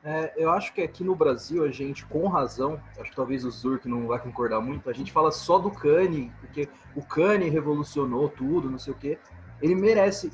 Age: 20-39